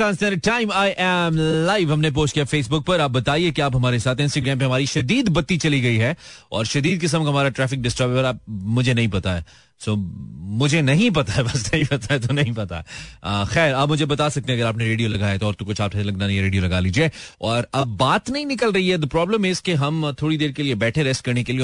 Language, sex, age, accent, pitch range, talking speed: Hindi, male, 30-49, native, 110-150 Hz, 240 wpm